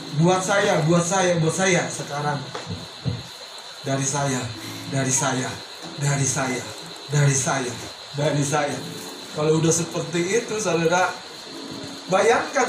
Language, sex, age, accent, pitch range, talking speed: Indonesian, male, 30-49, native, 165-270 Hz, 120 wpm